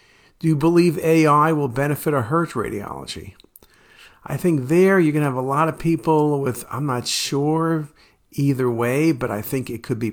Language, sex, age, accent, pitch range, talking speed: English, male, 50-69, American, 120-155 Hz, 195 wpm